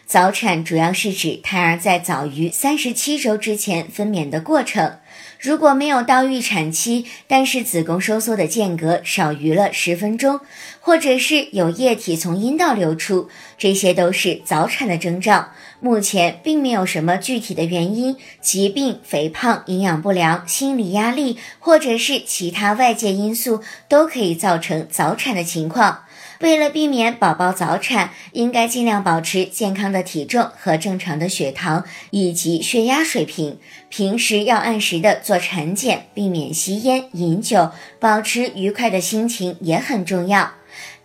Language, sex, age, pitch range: Chinese, male, 50-69, 180-245 Hz